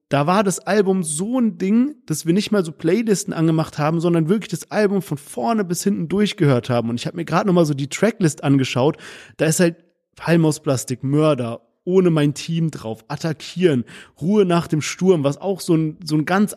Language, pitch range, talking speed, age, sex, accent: German, 145-185 Hz, 210 wpm, 30-49, male, German